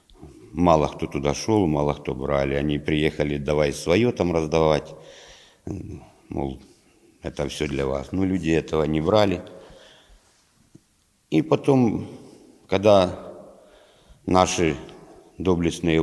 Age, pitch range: 50-69, 80-100 Hz